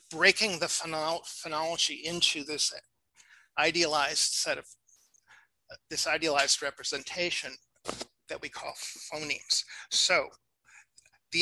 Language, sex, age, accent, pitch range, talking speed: English, male, 50-69, American, 160-205 Hz, 90 wpm